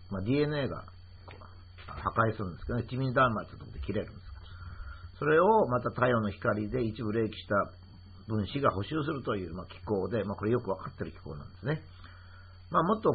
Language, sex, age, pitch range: Japanese, male, 50-69, 90-125 Hz